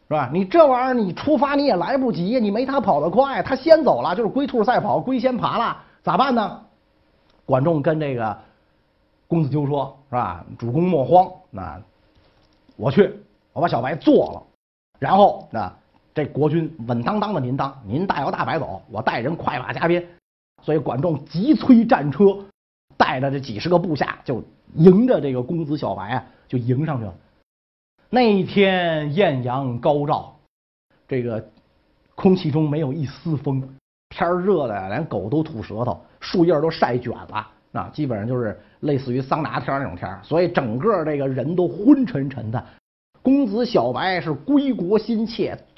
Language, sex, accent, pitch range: Chinese, male, native, 125-195 Hz